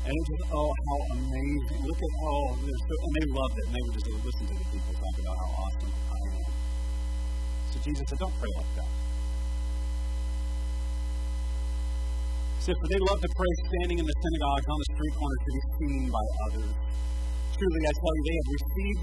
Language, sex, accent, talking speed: English, female, American, 200 wpm